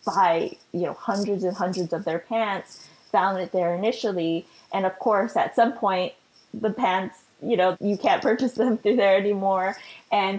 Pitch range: 185-230 Hz